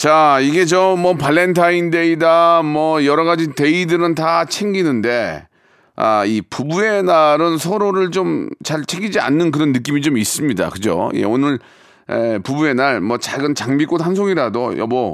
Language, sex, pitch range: Korean, male, 125-175 Hz